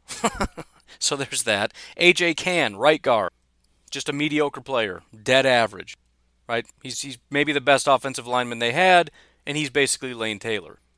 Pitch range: 125-175 Hz